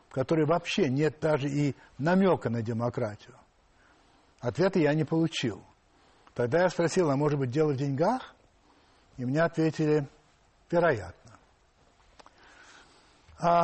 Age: 60-79